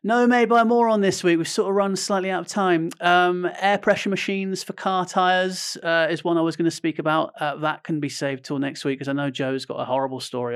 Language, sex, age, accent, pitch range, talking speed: English, male, 30-49, British, 145-215 Hz, 265 wpm